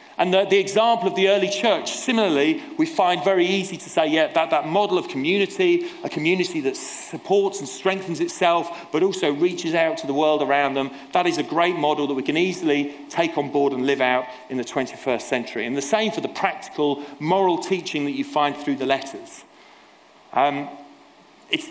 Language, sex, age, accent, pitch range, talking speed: English, male, 40-59, British, 140-215 Hz, 200 wpm